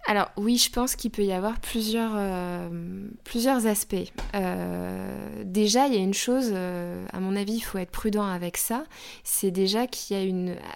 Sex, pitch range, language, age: female, 190-230 Hz, French, 20-39